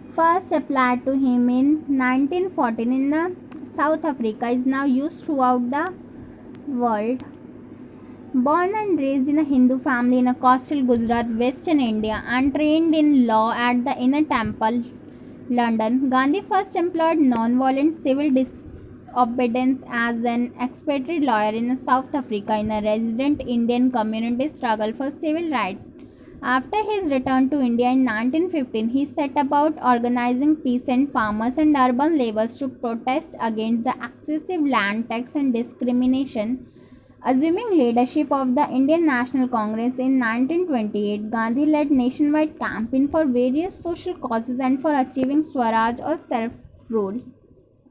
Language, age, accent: English, 20-39, Indian